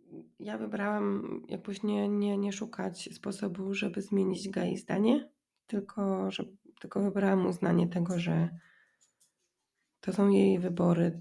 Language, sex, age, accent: Polish, female, 20-39, native